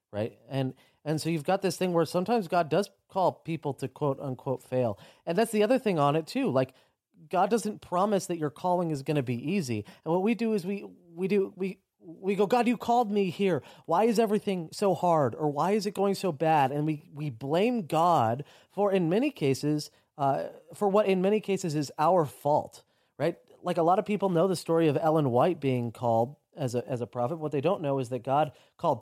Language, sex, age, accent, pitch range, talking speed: English, male, 30-49, American, 135-195 Hz, 225 wpm